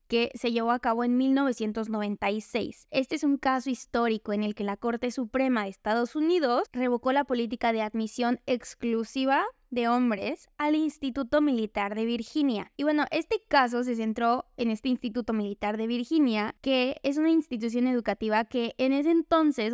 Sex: female